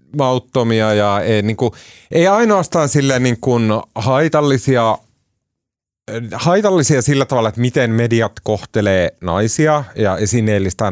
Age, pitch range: 30-49, 100-130 Hz